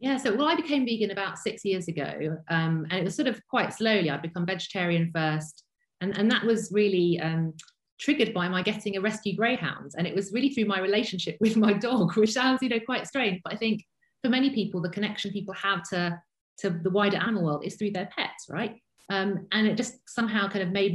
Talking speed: 230 wpm